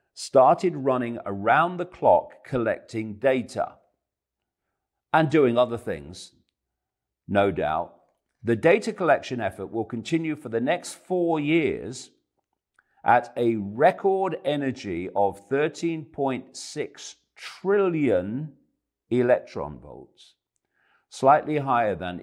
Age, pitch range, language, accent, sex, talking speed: 50-69, 95-150 Hz, English, British, male, 95 wpm